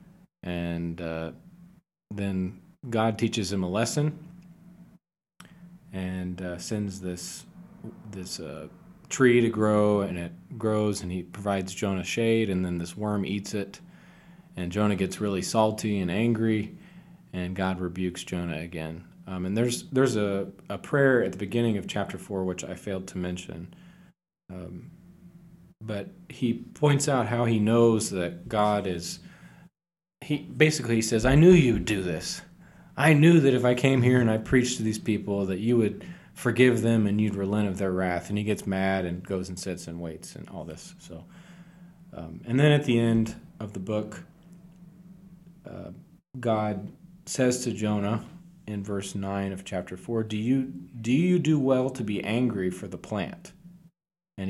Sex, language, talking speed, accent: male, English, 170 wpm, American